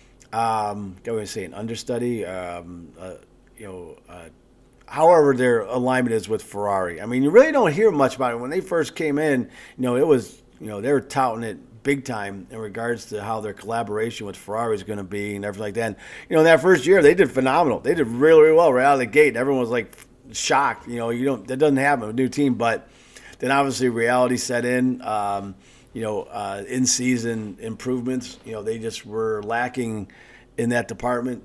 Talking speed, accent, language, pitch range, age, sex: 220 wpm, American, English, 110-130 Hz, 40-59, male